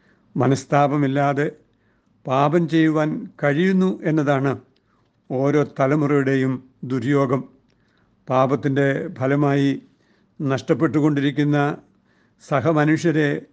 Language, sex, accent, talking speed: Malayalam, male, native, 55 wpm